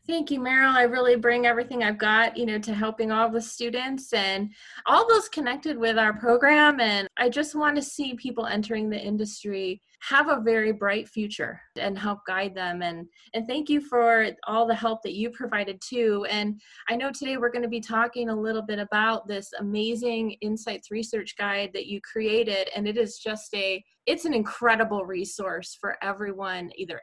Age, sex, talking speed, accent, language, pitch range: 20-39, female, 190 wpm, American, English, 205-235 Hz